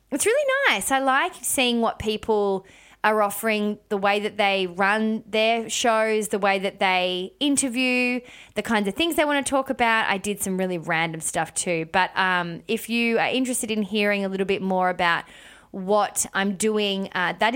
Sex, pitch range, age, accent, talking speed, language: female, 190-225 Hz, 20-39, Australian, 190 wpm, English